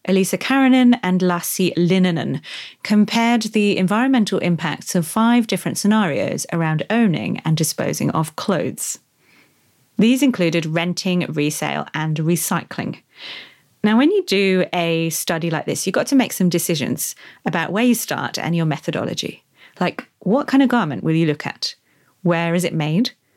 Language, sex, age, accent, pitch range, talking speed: English, female, 30-49, British, 160-205 Hz, 150 wpm